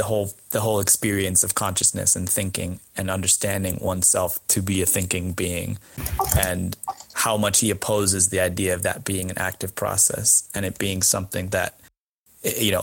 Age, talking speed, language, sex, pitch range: 20-39, 165 wpm, English, male, 95-110 Hz